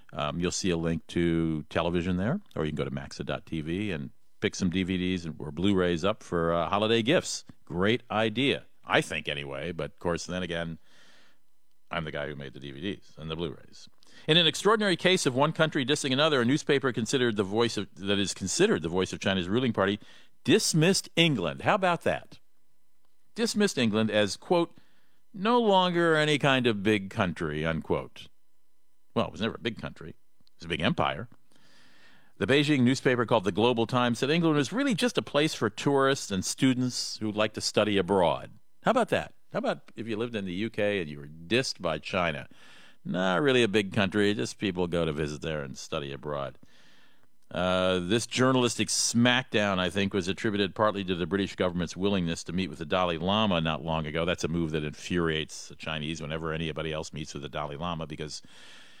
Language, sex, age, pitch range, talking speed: English, male, 50-69, 80-125 Hz, 195 wpm